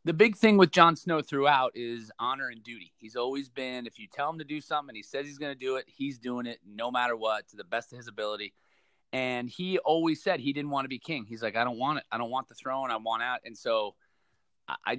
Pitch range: 110-135 Hz